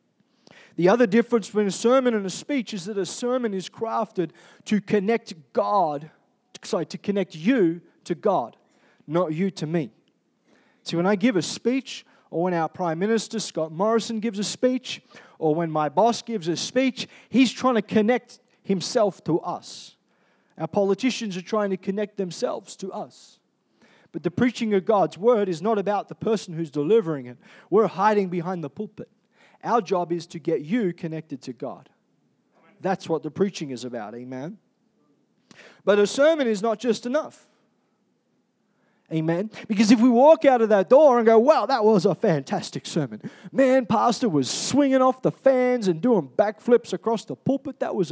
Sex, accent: male, Australian